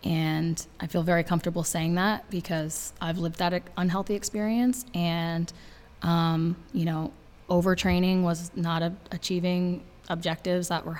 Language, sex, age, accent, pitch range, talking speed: English, female, 20-39, American, 165-180 Hz, 135 wpm